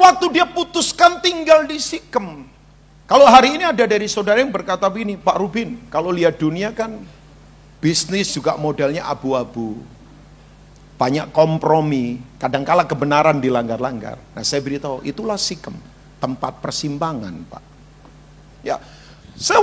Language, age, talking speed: Indonesian, 50-69, 120 wpm